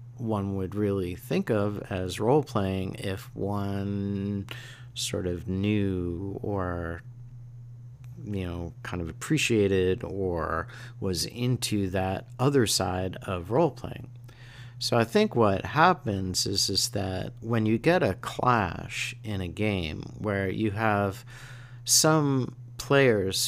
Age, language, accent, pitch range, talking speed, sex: 50-69, English, American, 100-125 Hz, 120 wpm, male